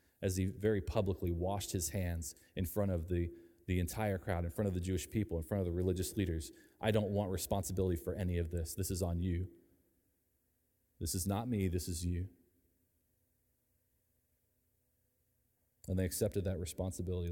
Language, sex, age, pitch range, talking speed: English, male, 30-49, 90-115 Hz, 175 wpm